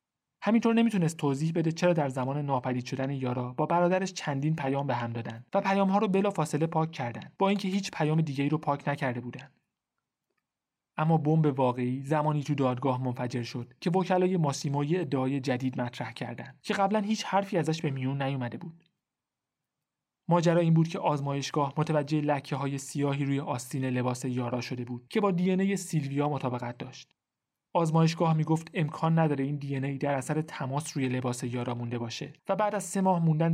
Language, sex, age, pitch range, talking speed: Persian, male, 30-49, 130-170 Hz, 180 wpm